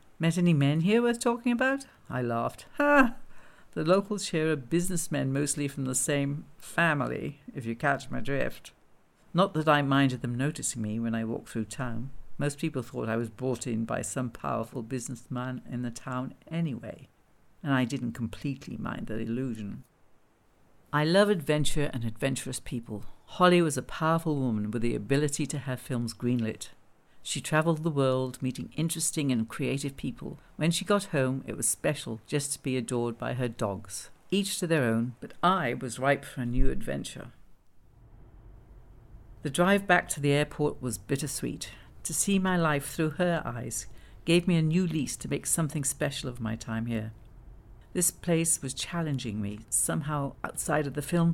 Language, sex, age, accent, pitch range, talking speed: English, female, 60-79, British, 120-165 Hz, 175 wpm